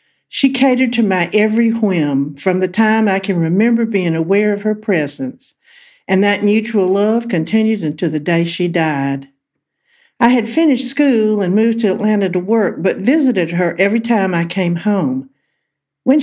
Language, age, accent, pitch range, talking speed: English, 50-69, American, 160-230 Hz, 170 wpm